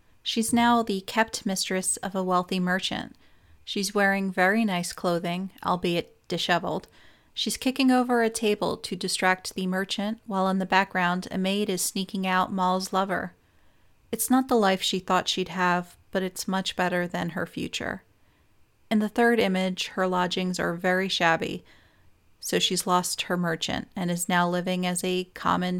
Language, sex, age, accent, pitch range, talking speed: English, female, 30-49, American, 180-205 Hz, 165 wpm